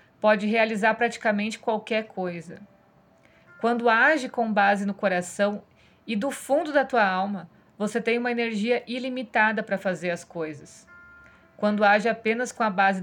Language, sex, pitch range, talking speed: Portuguese, female, 200-235 Hz, 145 wpm